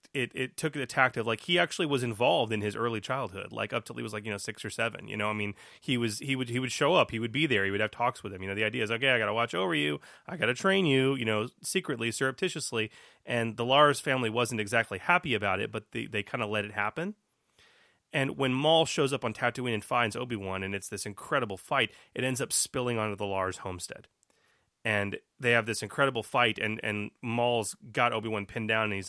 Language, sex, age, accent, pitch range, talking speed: English, male, 30-49, American, 105-120 Hz, 245 wpm